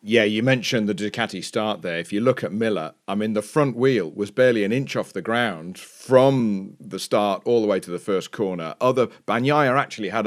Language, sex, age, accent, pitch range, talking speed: English, male, 40-59, British, 105-140 Hz, 220 wpm